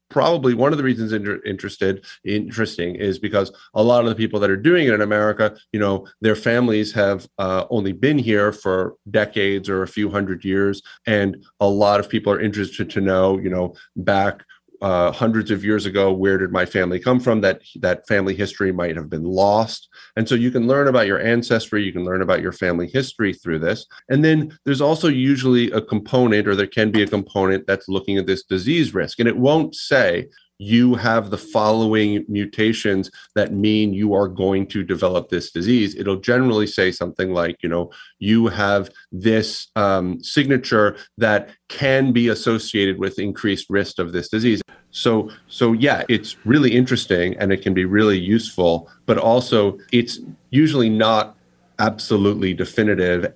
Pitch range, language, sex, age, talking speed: 95-115 Hz, English, male, 30-49, 185 wpm